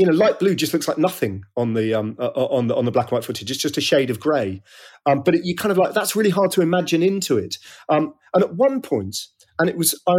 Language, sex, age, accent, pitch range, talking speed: English, male, 40-59, British, 115-160 Hz, 290 wpm